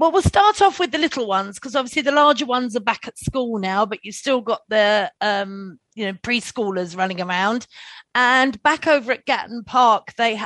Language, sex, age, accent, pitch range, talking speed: English, female, 40-59, British, 200-255 Hz, 205 wpm